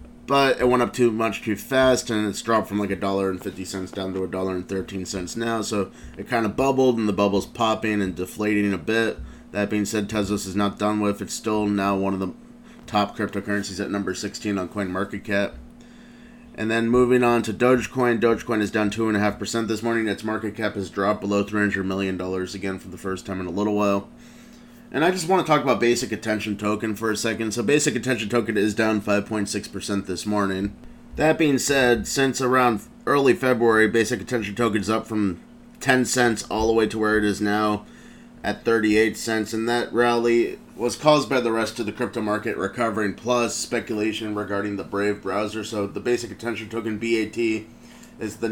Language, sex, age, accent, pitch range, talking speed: English, male, 30-49, American, 100-120 Hz, 190 wpm